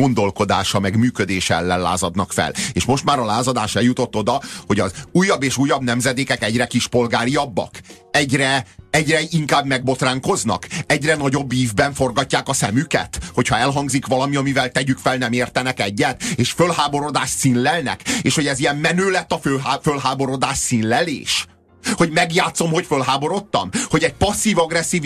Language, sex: Hungarian, male